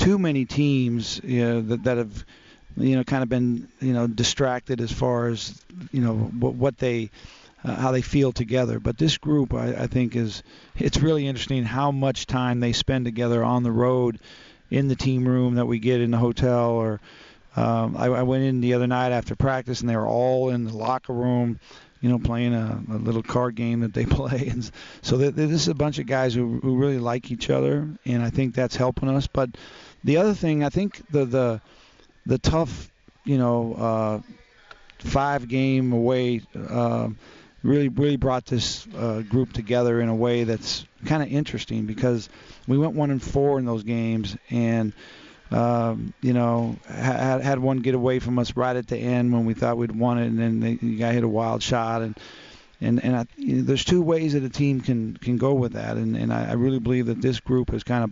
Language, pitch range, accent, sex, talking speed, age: English, 115-130 Hz, American, male, 215 wpm, 40-59